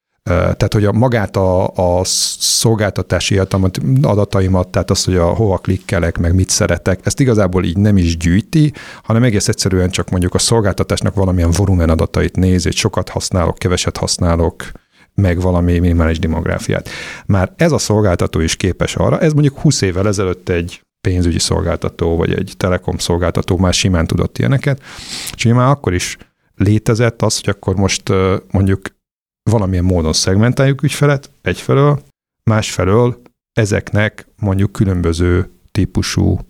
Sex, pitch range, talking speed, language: male, 90-115 Hz, 140 wpm, Hungarian